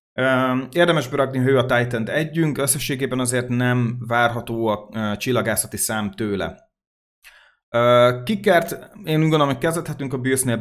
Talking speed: 140 wpm